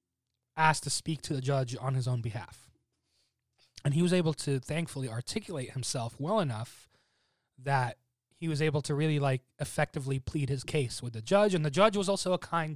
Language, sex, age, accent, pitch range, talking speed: English, male, 20-39, American, 120-150 Hz, 195 wpm